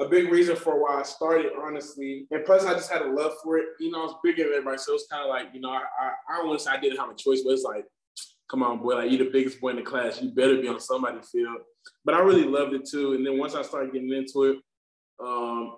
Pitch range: 125-155 Hz